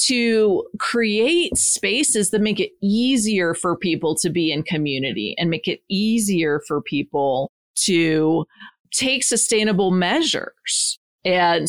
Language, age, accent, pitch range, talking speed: English, 40-59, American, 155-200 Hz, 125 wpm